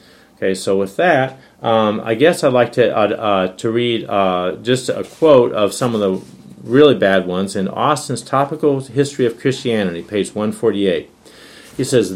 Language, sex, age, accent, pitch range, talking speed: English, male, 50-69, American, 105-135 Hz, 180 wpm